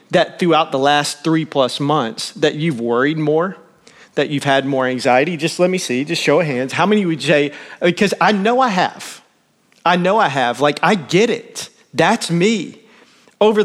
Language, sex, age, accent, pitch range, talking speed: English, male, 40-59, American, 155-210 Hz, 200 wpm